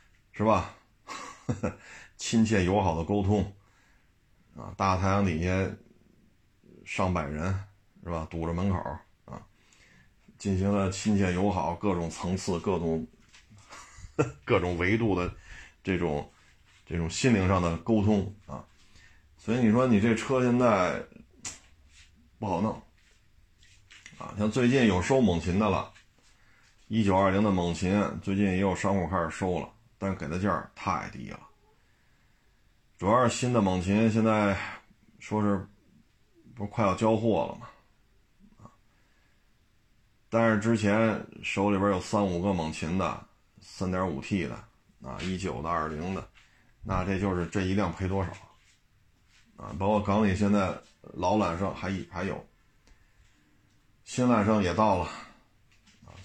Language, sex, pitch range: Chinese, male, 90-105 Hz